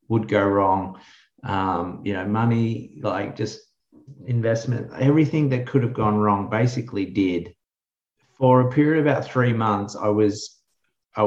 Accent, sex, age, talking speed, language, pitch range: Australian, male, 30-49, 145 wpm, English, 95-115 Hz